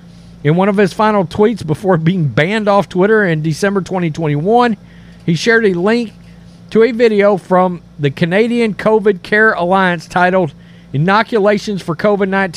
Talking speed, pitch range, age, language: 150 wpm, 155-200 Hz, 50-69, English